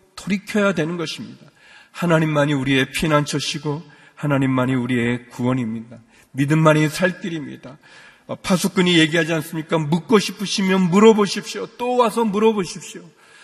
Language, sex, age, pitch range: Korean, male, 40-59, 140-200 Hz